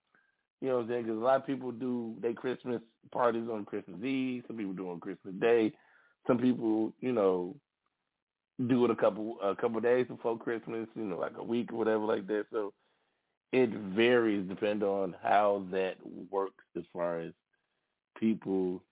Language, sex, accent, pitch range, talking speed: English, male, American, 95-125 Hz, 180 wpm